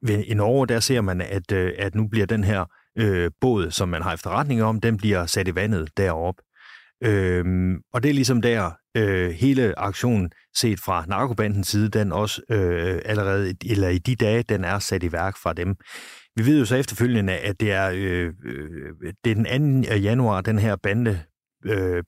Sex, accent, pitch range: male, native, 95-115 Hz